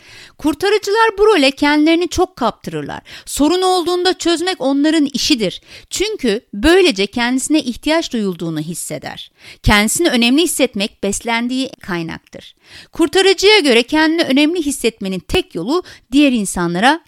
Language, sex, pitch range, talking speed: Turkish, female, 215-310 Hz, 110 wpm